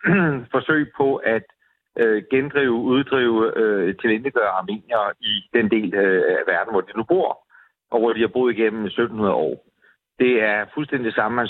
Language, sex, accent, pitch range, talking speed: Danish, male, native, 105-130 Hz, 165 wpm